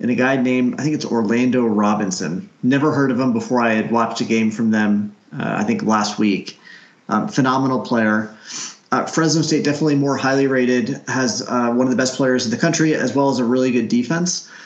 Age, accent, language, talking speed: 30-49, American, English, 215 wpm